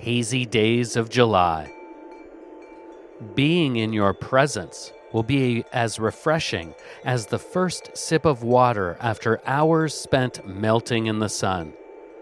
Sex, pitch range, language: male, 110-160 Hz, English